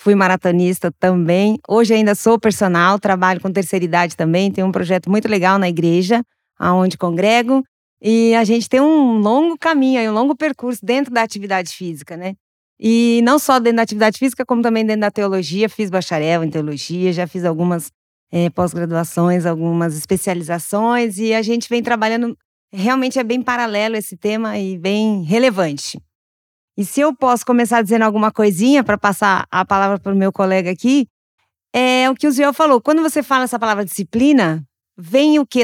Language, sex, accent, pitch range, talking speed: Portuguese, female, Brazilian, 190-240 Hz, 175 wpm